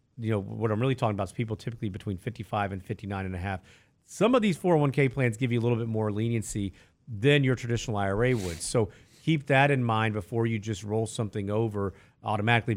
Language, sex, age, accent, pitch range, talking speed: English, male, 40-59, American, 105-140 Hz, 215 wpm